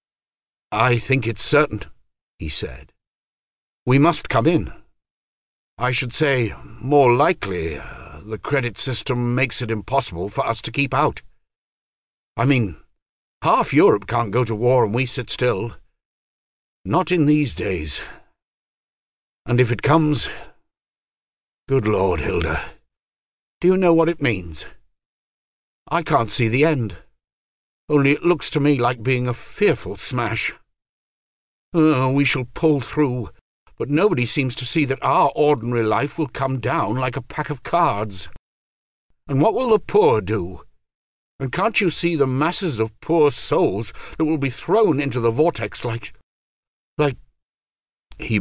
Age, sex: 60-79, male